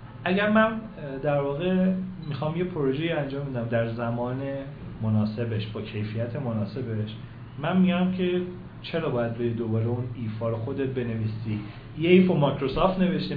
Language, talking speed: Persian, 140 wpm